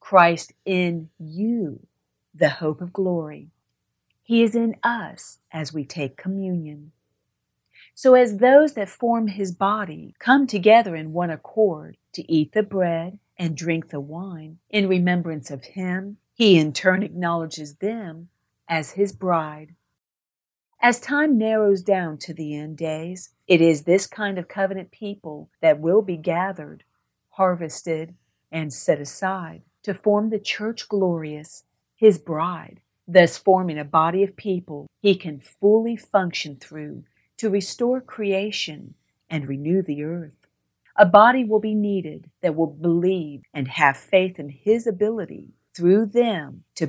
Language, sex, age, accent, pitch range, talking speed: English, female, 50-69, American, 160-210 Hz, 145 wpm